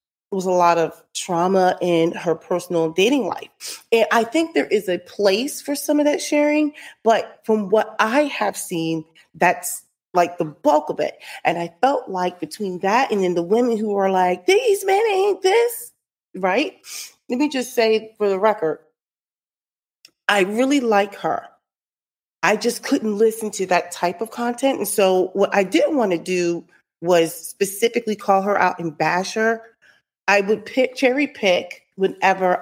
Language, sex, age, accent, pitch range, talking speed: English, female, 30-49, American, 180-255 Hz, 175 wpm